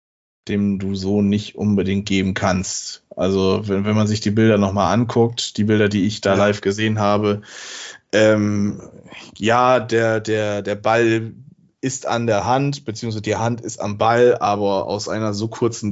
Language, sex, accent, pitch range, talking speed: German, male, German, 105-125 Hz, 170 wpm